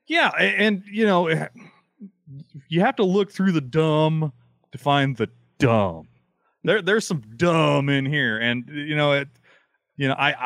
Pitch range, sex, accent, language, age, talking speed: 125-160 Hz, male, American, English, 30-49, 160 wpm